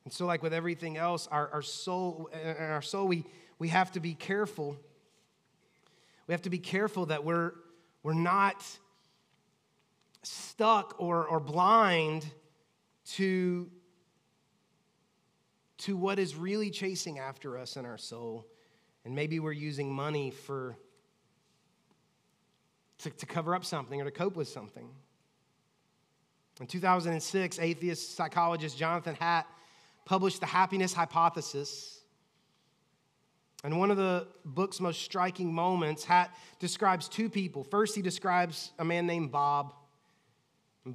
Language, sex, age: English, male, 30-49